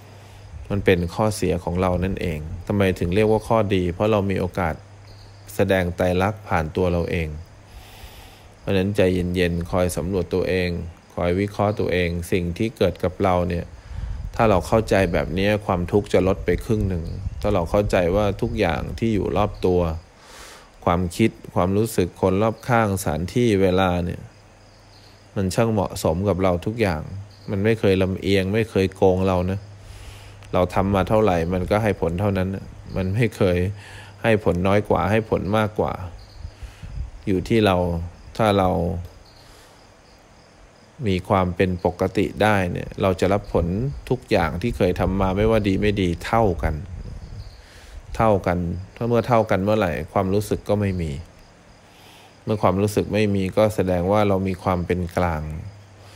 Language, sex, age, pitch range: English, male, 20-39, 90-105 Hz